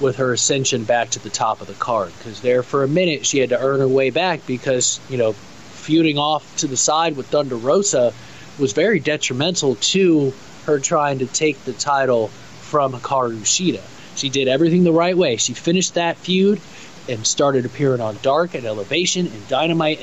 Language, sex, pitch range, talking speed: English, male, 125-160 Hz, 190 wpm